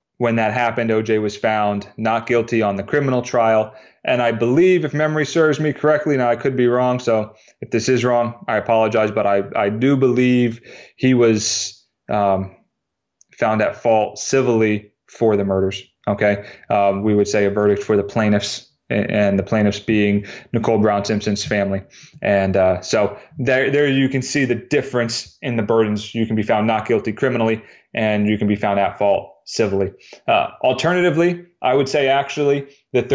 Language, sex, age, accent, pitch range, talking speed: English, male, 30-49, American, 105-135 Hz, 180 wpm